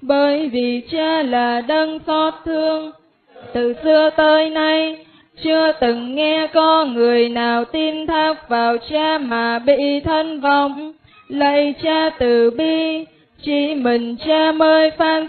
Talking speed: 135 wpm